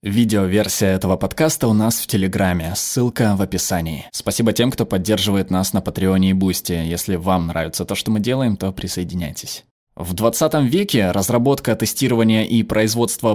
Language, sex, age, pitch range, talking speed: Russian, male, 20-39, 100-135 Hz, 155 wpm